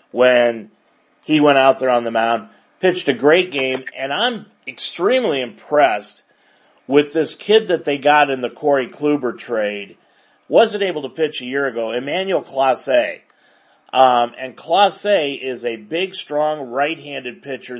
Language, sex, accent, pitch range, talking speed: English, male, American, 125-160 Hz, 150 wpm